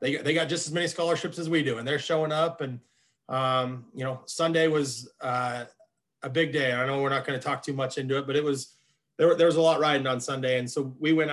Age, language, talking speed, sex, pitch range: 30-49, English, 265 wpm, male, 130-150 Hz